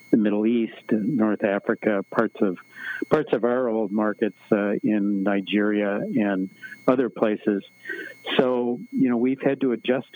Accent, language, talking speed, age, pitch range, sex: American, English, 155 wpm, 60-79, 105-120 Hz, male